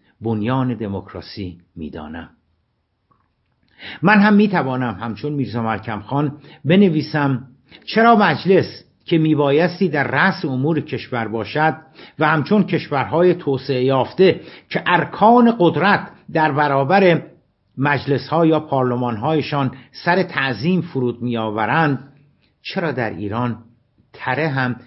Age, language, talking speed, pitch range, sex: 60-79, Persian, 100 wpm, 120-160 Hz, male